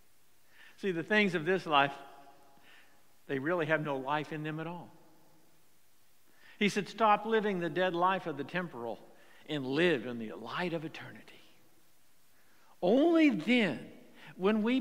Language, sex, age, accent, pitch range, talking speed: English, male, 60-79, American, 155-215 Hz, 145 wpm